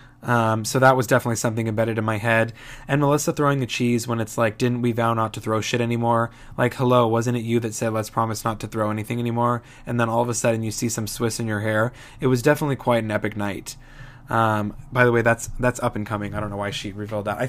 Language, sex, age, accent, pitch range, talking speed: English, male, 20-39, American, 110-130 Hz, 265 wpm